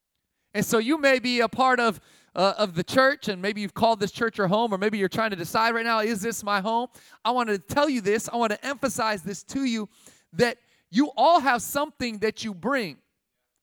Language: English